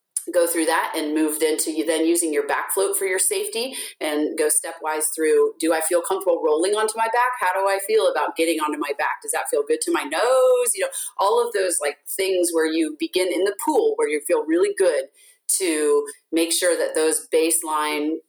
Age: 30-49